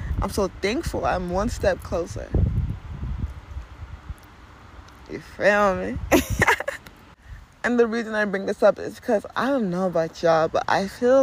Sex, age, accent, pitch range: female, 20-39, American, 165-205 Hz